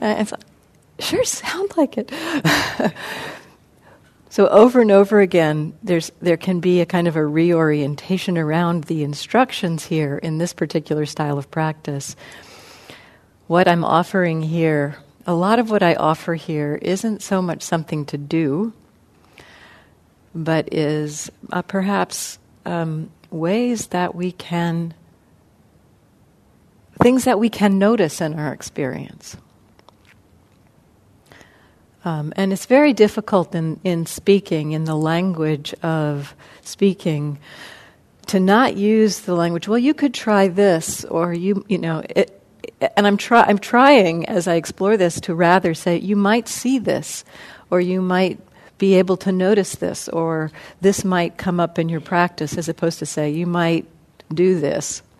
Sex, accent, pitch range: female, American, 160-200 Hz